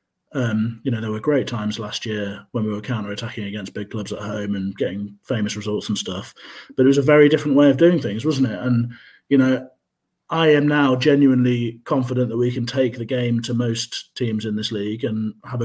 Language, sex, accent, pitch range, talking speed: English, male, British, 115-145 Hz, 225 wpm